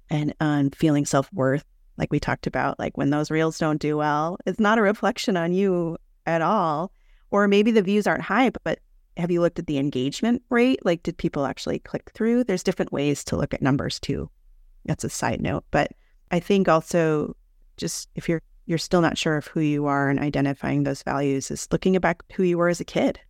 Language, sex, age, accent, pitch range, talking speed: English, female, 30-49, American, 140-175 Hz, 220 wpm